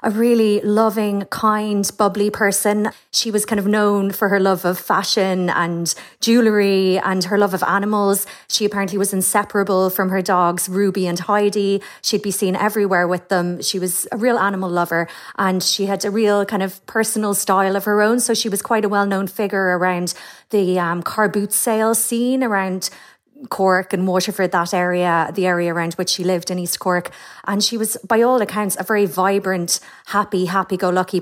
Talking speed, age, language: 185 wpm, 30-49, English